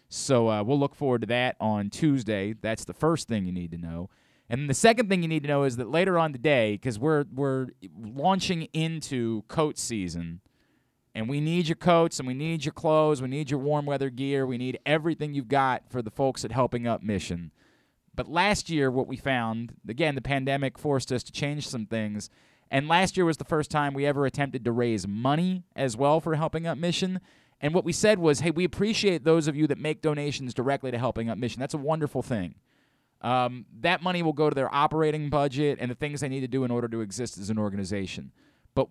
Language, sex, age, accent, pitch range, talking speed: English, male, 30-49, American, 120-165 Hz, 225 wpm